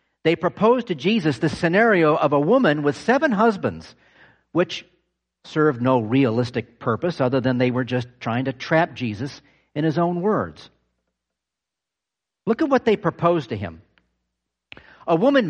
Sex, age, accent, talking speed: male, 50-69, American, 150 wpm